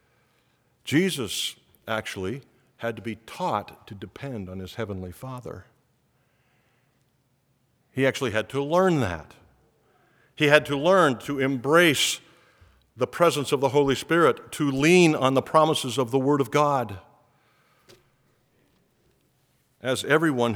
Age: 50-69